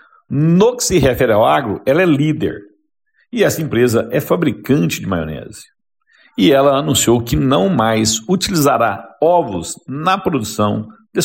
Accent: Brazilian